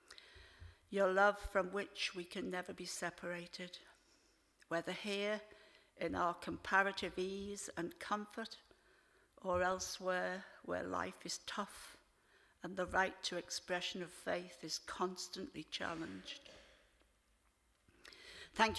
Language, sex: English, female